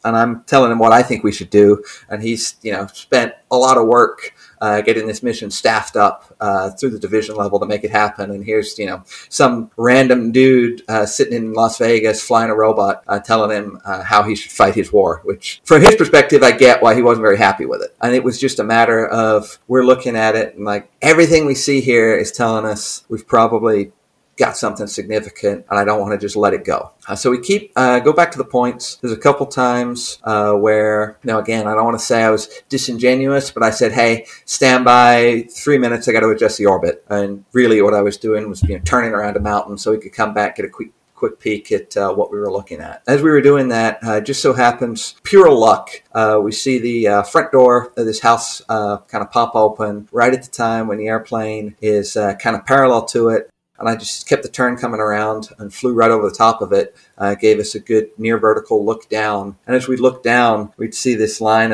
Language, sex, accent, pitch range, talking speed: English, male, American, 105-125 Hz, 245 wpm